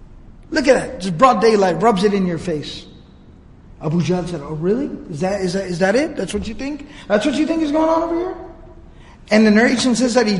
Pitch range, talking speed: 195-240 Hz, 240 wpm